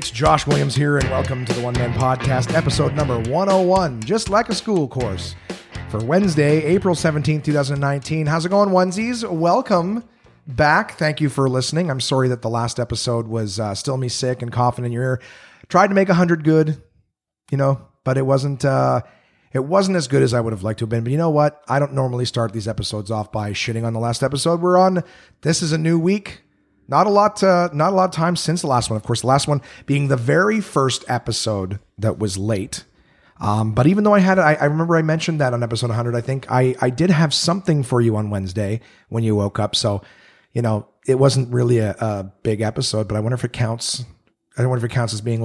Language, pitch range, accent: English, 115-155 Hz, American